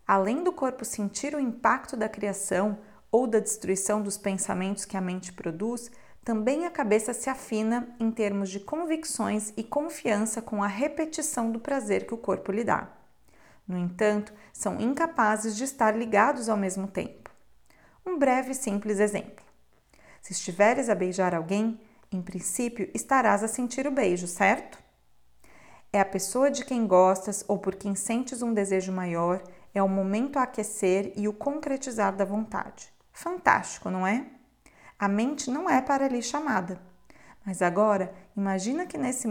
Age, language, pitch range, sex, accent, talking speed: 40-59, Portuguese, 195-255 Hz, female, Brazilian, 160 wpm